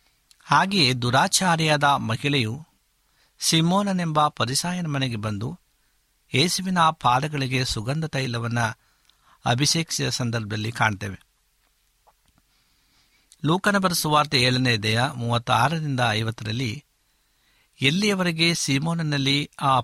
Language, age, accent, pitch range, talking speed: Kannada, 60-79, native, 115-150 Hz, 75 wpm